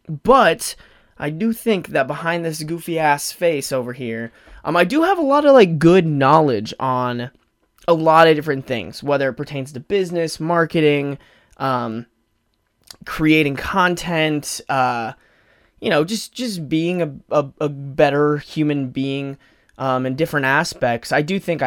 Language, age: English, 20-39